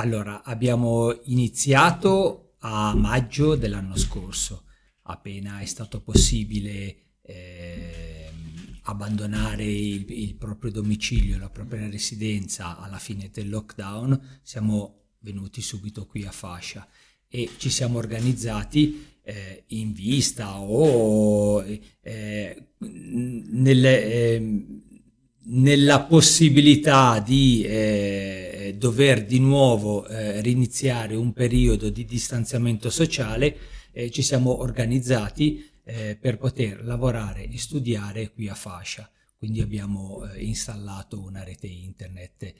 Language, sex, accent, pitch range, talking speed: Italian, male, native, 100-120 Hz, 105 wpm